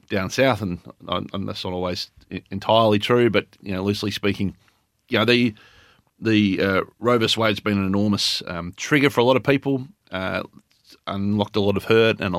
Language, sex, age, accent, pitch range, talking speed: English, male, 30-49, Australian, 95-115 Hz, 185 wpm